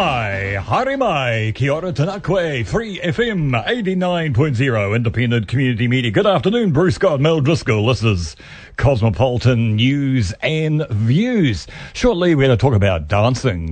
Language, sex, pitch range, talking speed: English, male, 105-150 Hz, 130 wpm